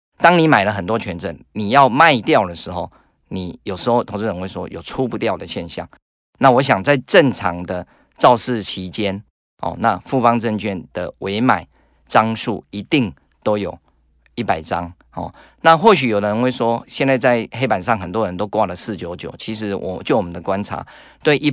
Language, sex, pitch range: Chinese, male, 90-115 Hz